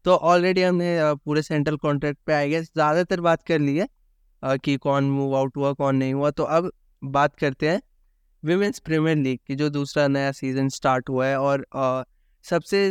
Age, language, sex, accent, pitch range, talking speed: 20-39, Hindi, male, native, 140-165 Hz, 185 wpm